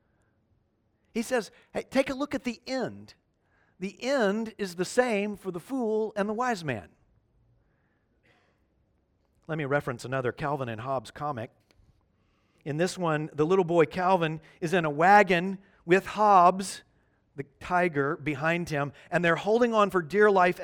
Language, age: English, 40-59